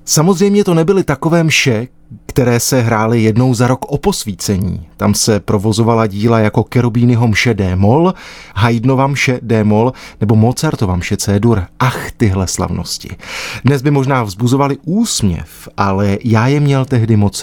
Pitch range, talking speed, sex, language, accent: 105-140 Hz, 145 wpm, male, Czech, native